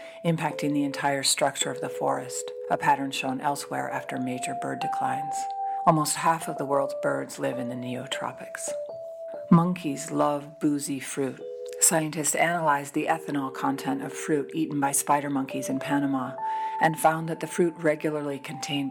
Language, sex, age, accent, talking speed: English, female, 50-69, American, 155 wpm